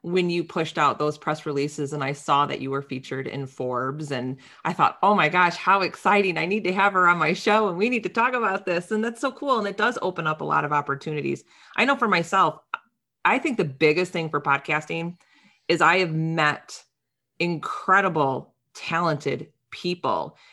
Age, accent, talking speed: 30-49, American, 205 wpm